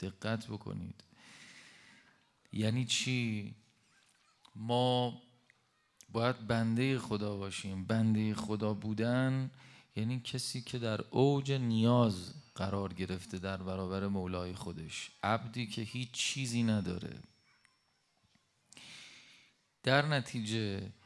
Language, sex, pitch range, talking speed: Persian, male, 95-120 Hz, 90 wpm